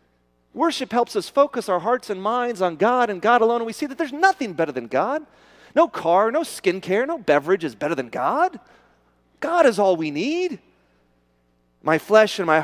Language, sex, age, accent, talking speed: English, male, 40-59, American, 195 wpm